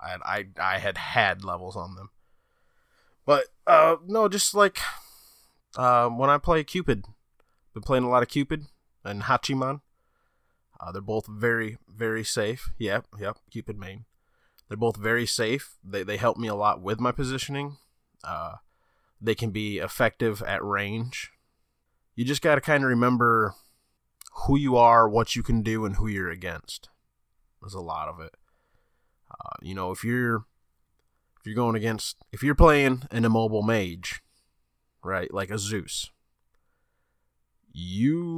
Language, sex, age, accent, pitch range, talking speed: English, male, 20-39, American, 95-135 Hz, 155 wpm